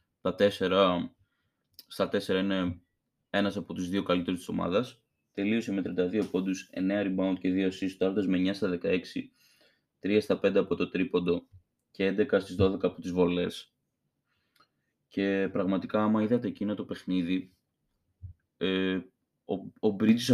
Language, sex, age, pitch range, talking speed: Greek, male, 20-39, 90-105 Hz, 140 wpm